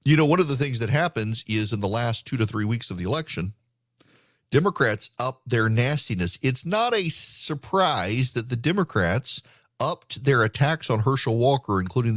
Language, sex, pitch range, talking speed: English, male, 110-150 Hz, 185 wpm